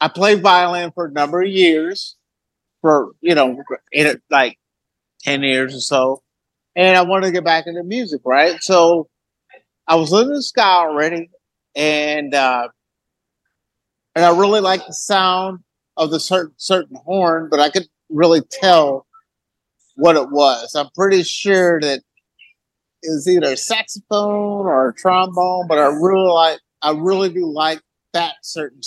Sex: male